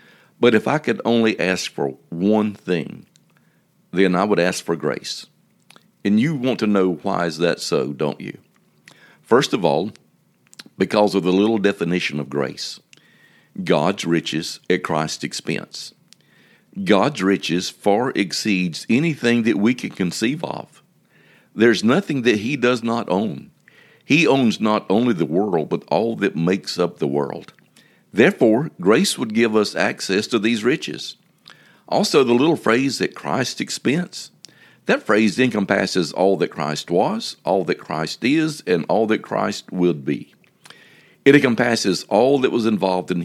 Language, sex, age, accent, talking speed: English, male, 50-69, American, 155 wpm